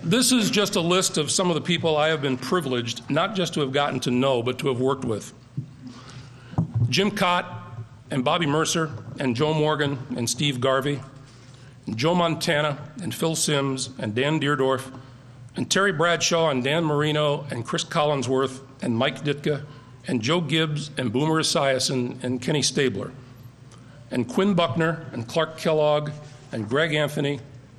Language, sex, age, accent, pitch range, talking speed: English, male, 50-69, American, 125-160 Hz, 165 wpm